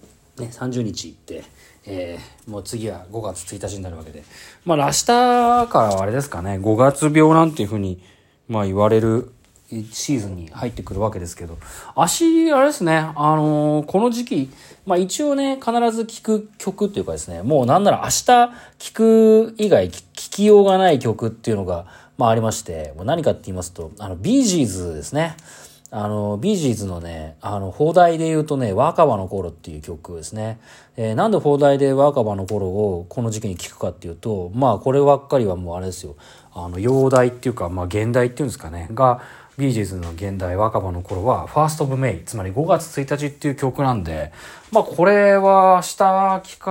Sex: male